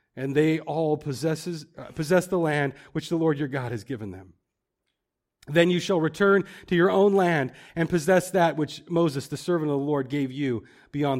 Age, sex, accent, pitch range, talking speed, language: 40-59, male, American, 140-205 Hz, 195 wpm, English